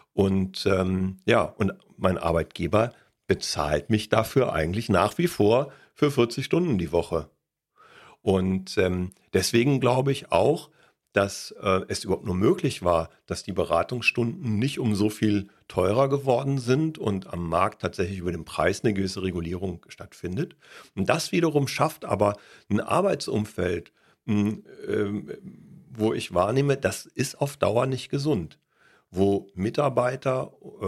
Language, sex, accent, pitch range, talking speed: English, male, German, 95-135 Hz, 135 wpm